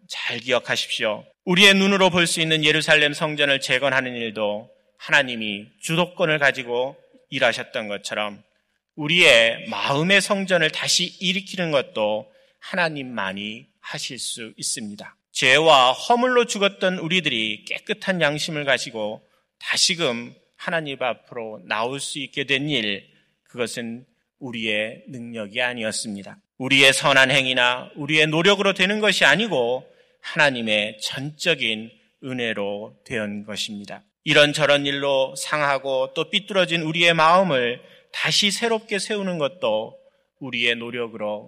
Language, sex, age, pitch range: Korean, male, 30-49, 115-180 Hz